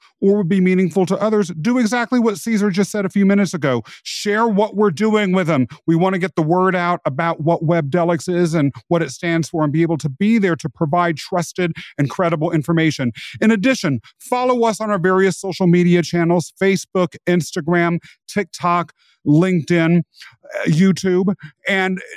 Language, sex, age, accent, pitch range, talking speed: English, male, 40-59, American, 170-215 Hz, 180 wpm